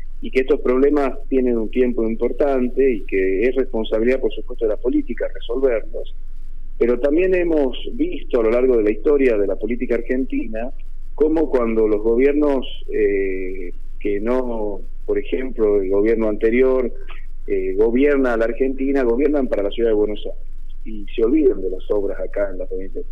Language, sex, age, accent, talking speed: Spanish, male, 30-49, Argentinian, 170 wpm